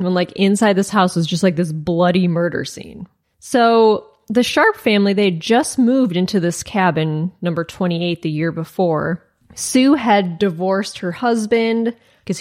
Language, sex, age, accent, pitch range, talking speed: English, female, 20-39, American, 180-230 Hz, 165 wpm